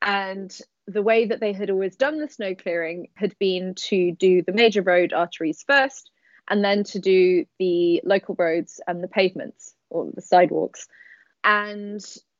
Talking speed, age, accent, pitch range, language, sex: 165 wpm, 20-39, British, 180-210 Hz, English, female